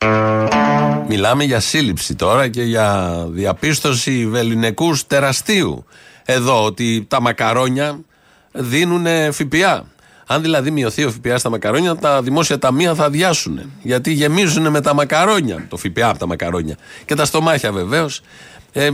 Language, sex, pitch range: Greek, male, 110-145 Hz